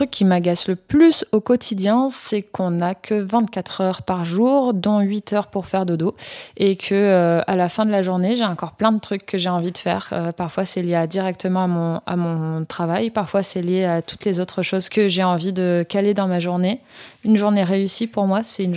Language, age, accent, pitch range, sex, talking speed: French, 20-39, French, 175-210 Hz, female, 235 wpm